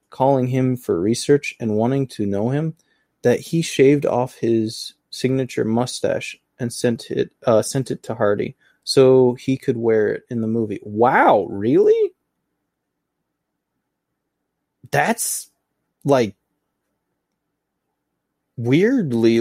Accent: American